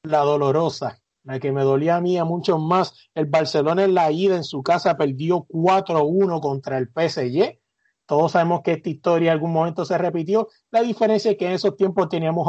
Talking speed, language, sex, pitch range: 200 wpm, Spanish, male, 150-185 Hz